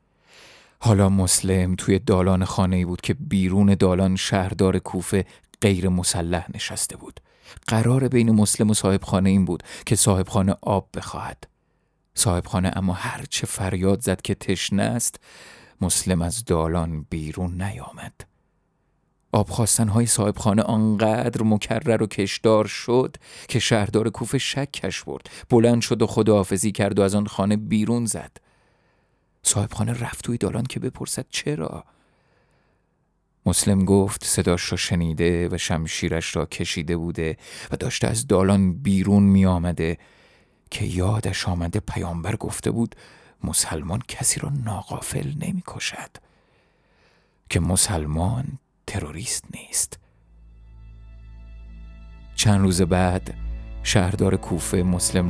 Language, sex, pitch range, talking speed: Persian, male, 90-110 Hz, 120 wpm